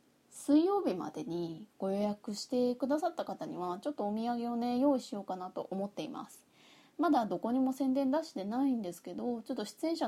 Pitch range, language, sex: 180-275 Hz, Japanese, female